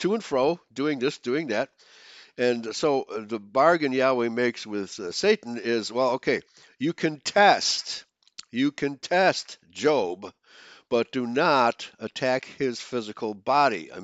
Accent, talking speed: American, 145 wpm